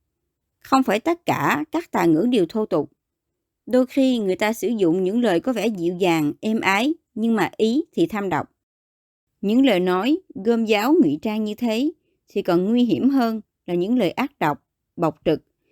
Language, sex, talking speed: Vietnamese, male, 195 wpm